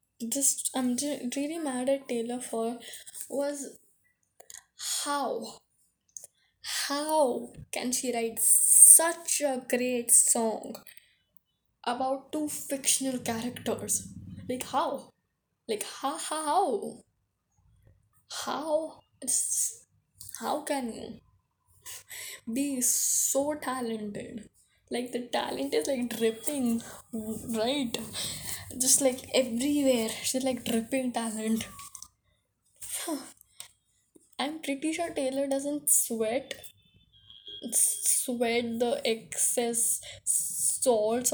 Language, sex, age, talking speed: English, female, 10-29, 90 wpm